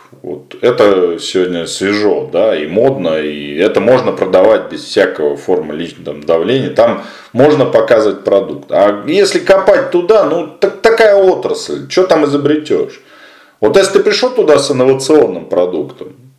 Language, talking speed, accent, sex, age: Russian, 135 wpm, native, male, 40-59